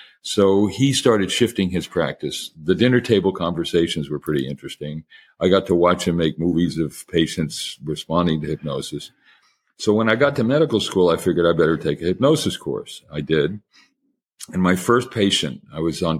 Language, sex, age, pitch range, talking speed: English, male, 50-69, 80-100 Hz, 180 wpm